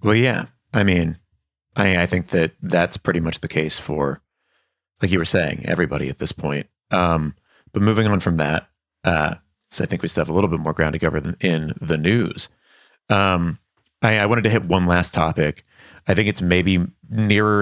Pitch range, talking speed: 85-100 Hz, 200 wpm